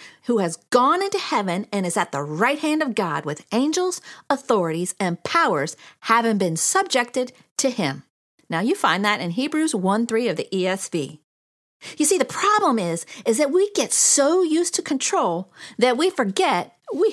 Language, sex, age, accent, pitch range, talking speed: English, female, 40-59, American, 190-310 Hz, 180 wpm